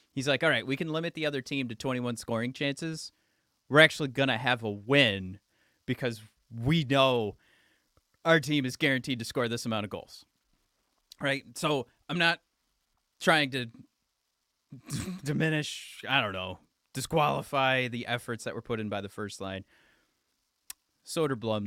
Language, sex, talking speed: English, male, 155 wpm